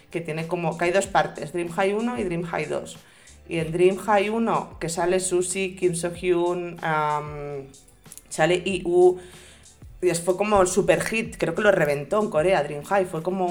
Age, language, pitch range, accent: 30-49, Spanish, 160-190 Hz, Spanish